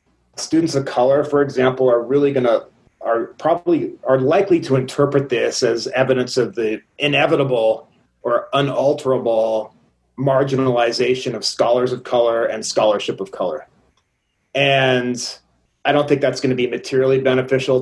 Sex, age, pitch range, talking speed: male, 30-49, 125-140 Hz, 140 wpm